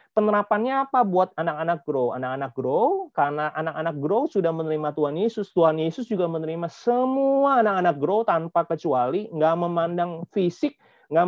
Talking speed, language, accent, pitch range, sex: 145 wpm, Indonesian, native, 155-225 Hz, male